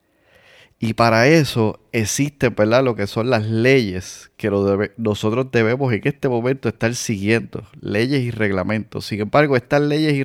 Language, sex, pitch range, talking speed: Spanish, male, 100-130 Hz, 160 wpm